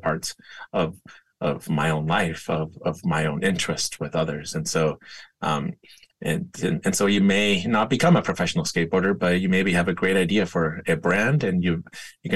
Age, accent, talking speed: 30-49, American, 190 wpm